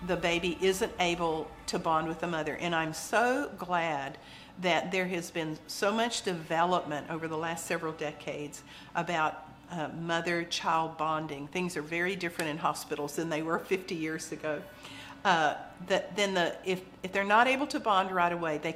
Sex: female